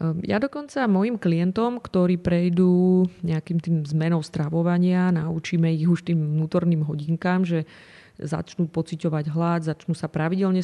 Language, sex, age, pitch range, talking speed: Slovak, female, 30-49, 155-175 Hz, 130 wpm